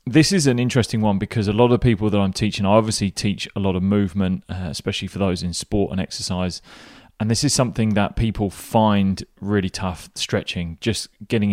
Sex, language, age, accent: male, English, 20-39, British